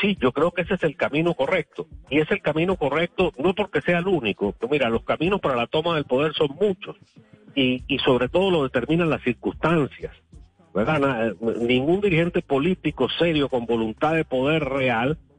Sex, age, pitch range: male, 50-69, 120-170 Hz